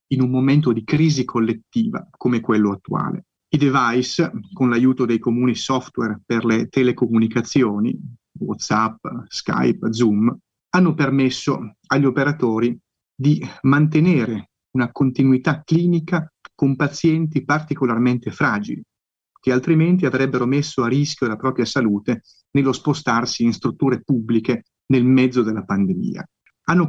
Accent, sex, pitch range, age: native, male, 120-155 Hz, 30-49